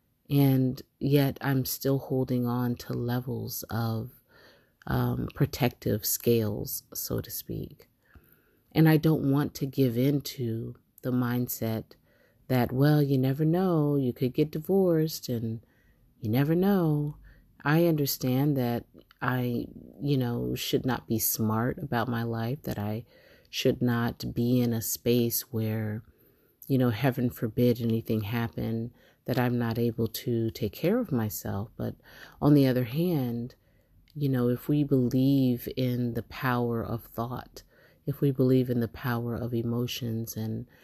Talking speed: 145 wpm